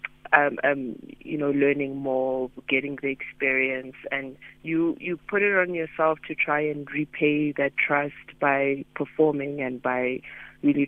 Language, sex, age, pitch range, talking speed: English, female, 30-49, 135-150 Hz, 150 wpm